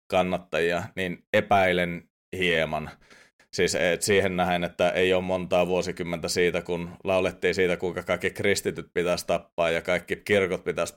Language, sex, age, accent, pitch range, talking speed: Finnish, male, 30-49, native, 85-95 Hz, 140 wpm